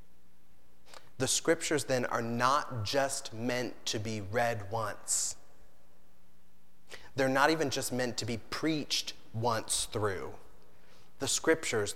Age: 30-49